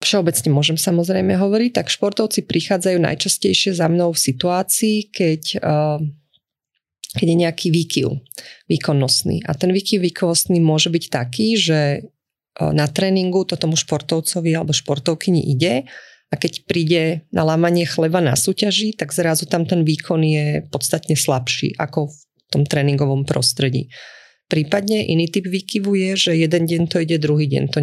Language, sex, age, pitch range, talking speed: Slovak, female, 30-49, 145-180 Hz, 145 wpm